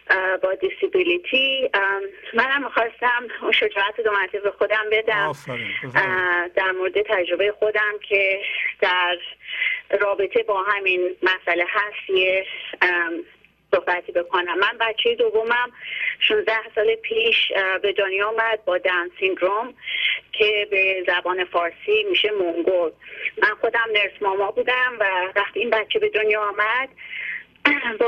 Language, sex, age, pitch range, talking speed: Persian, female, 30-49, 190-265 Hz, 115 wpm